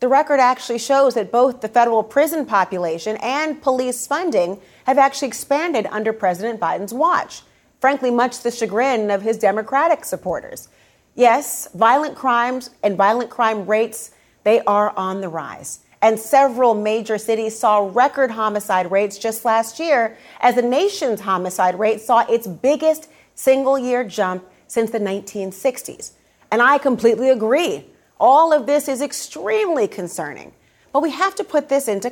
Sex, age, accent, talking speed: female, 30-49, American, 155 wpm